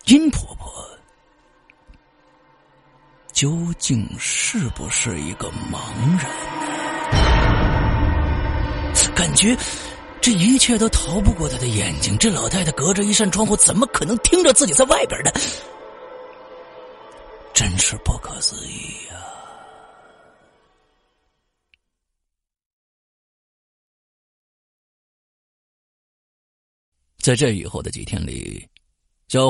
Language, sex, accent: Chinese, male, native